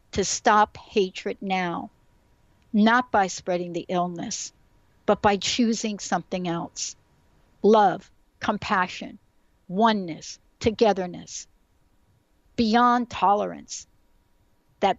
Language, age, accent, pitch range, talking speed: English, 60-79, American, 185-225 Hz, 85 wpm